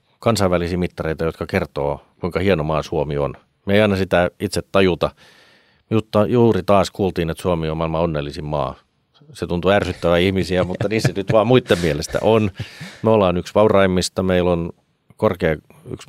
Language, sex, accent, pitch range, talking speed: Finnish, male, native, 80-100 Hz, 170 wpm